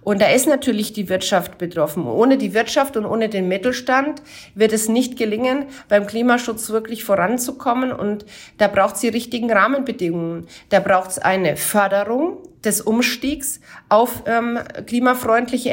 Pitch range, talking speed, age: 200-250 Hz, 150 wpm, 40-59